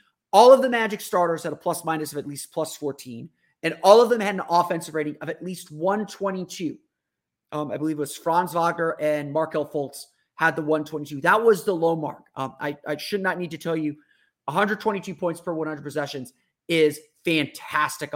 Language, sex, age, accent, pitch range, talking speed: English, male, 30-49, American, 150-190 Hz, 195 wpm